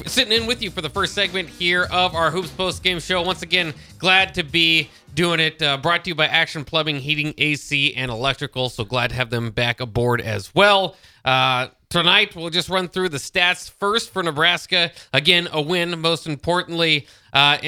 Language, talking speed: English, 200 wpm